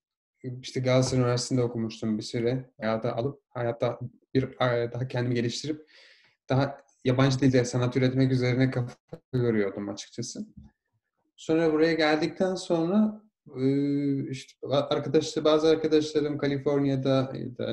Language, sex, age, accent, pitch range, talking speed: Turkish, male, 30-49, native, 120-140 Hz, 100 wpm